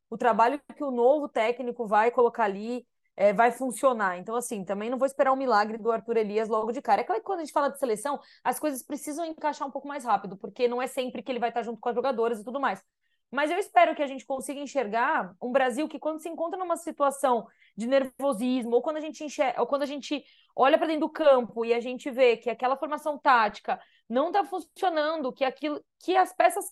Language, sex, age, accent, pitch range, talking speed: Portuguese, female, 20-39, Brazilian, 245-305 Hz, 240 wpm